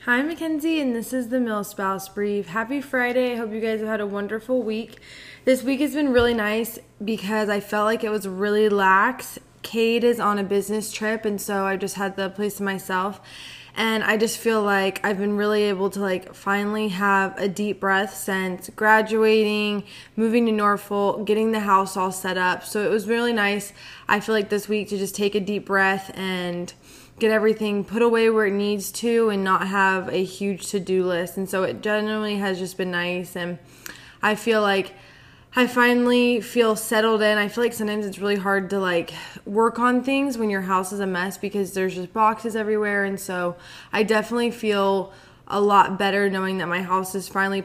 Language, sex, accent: English, female, American